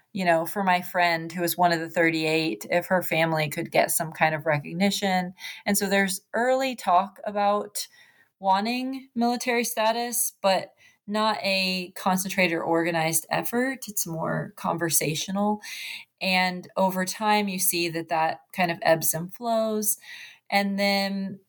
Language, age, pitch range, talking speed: English, 30-49, 170-210 Hz, 150 wpm